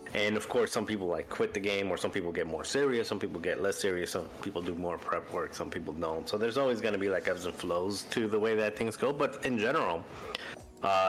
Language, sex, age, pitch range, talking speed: English, male, 30-49, 90-110 Hz, 260 wpm